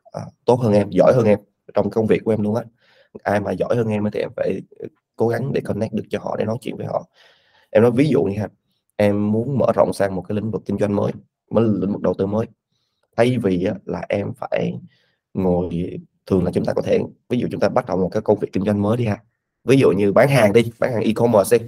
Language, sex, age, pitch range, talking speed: Vietnamese, male, 20-39, 100-115 Hz, 260 wpm